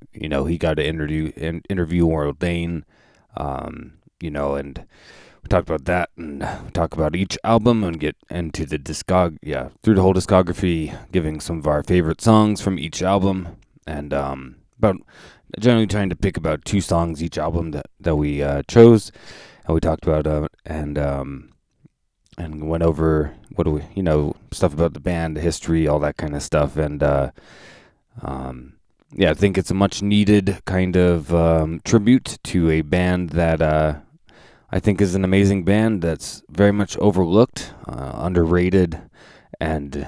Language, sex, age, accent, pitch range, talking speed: English, male, 20-39, American, 75-100 Hz, 170 wpm